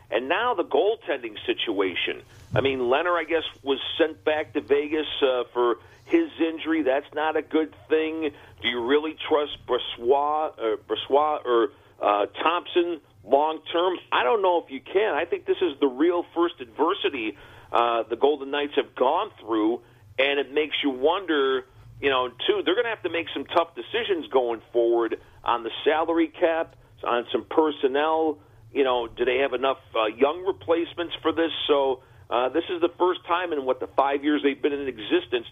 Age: 50-69